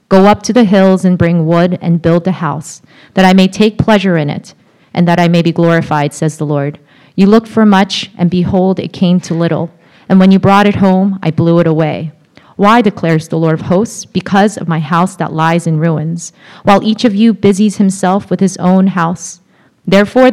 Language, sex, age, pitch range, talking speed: English, female, 30-49, 165-195 Hz, 215 wpm